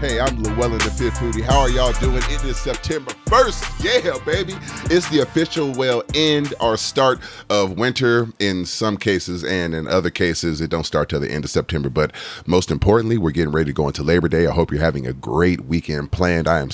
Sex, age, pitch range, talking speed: male, 30-49, 80-100 Hz, 220 wpm